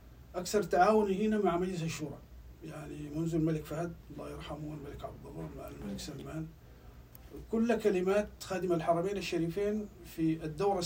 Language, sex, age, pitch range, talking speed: Arabic, male, 50-69, 150-175 Hz, 140 wpm